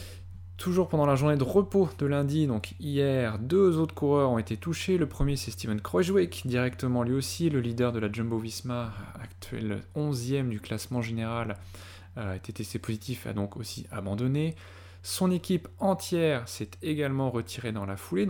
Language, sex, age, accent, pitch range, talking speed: French, male, 20-39, French, 100-145 Hz, 175 wpm